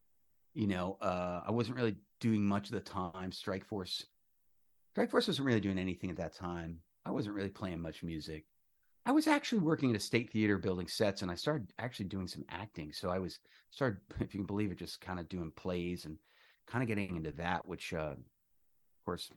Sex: male